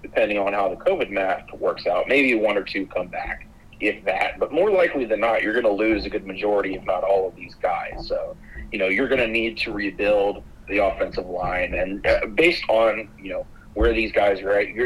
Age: 30-49